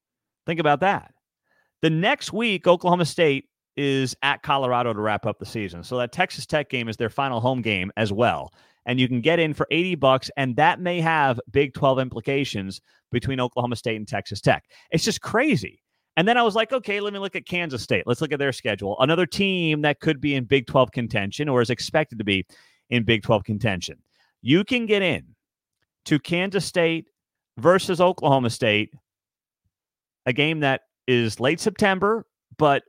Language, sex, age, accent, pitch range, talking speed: English, male, 30-49, American, 125-190 Hz, 190 wpm